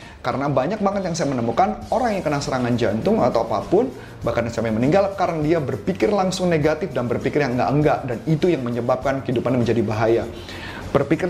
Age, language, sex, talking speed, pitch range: 30-49, Indonesian, male, 175 wpm, 115-155 Hz